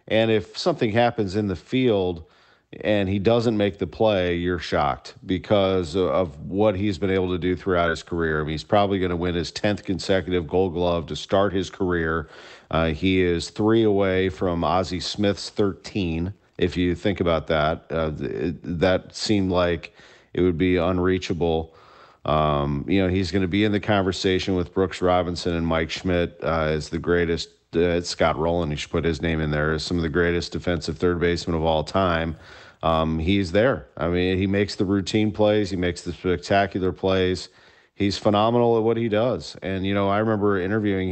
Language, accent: English, American